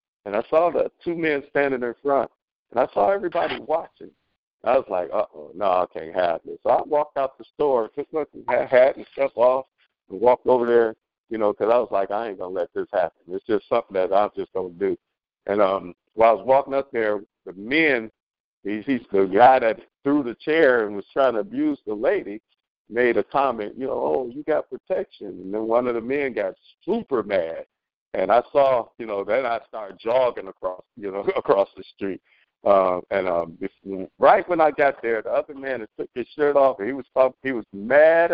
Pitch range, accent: 115-180 Hz, American